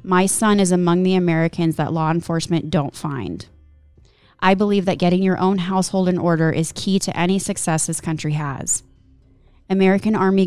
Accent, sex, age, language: American, female, 20-39, English